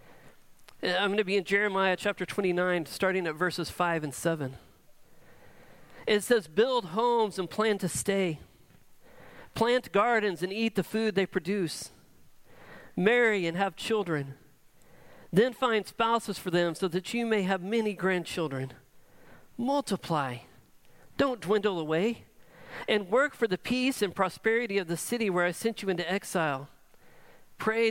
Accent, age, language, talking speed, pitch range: American, 40-59, English, 145 wpm, 175-220 Hz